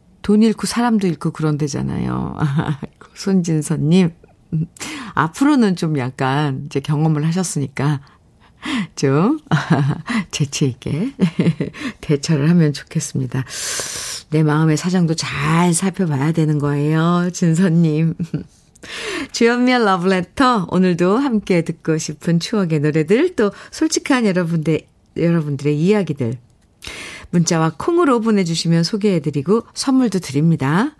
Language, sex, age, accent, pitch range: Korean, female, 50-69, native, 150-215 Hz